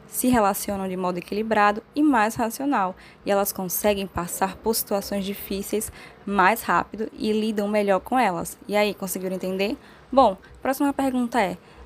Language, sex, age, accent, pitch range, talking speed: Portuguese, female, 10-29, Brazilian, 200-245 Hz, 155 wpm